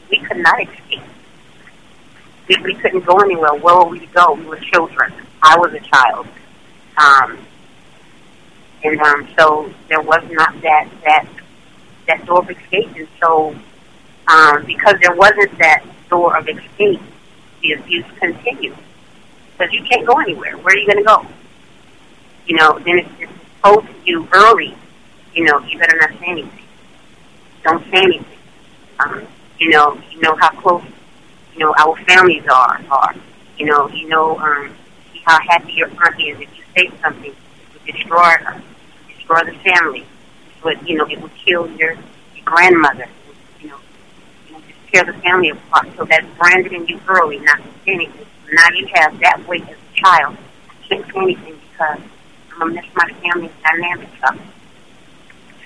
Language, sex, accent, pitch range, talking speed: English, female, American, 160-185 Hz, 175 wpm